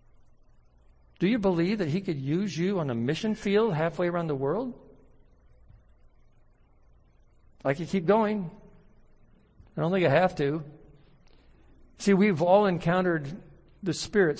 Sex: male